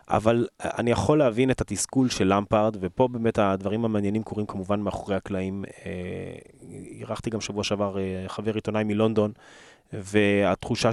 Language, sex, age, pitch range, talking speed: Hebrew, male, 20-39, 105-135 Hz, 145 wpm